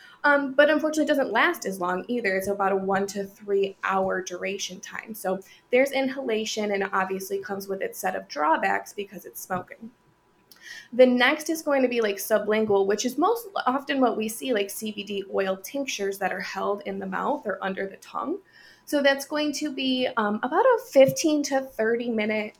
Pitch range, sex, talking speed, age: 200-275 Hz, female, 195 wpm, 20-39